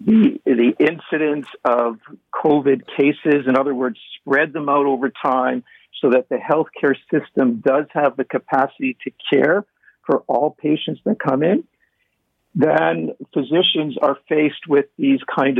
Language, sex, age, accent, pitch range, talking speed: English, male, 50-69, American, 130-155 Hz, 145 wpm